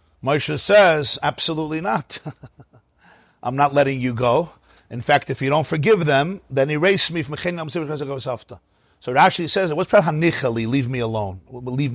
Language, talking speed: English, 160 wpm